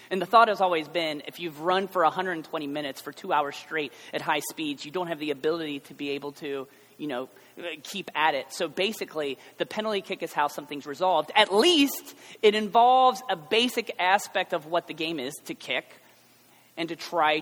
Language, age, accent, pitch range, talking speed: English, 30-49, American, 160-230 Hz, 205 wpm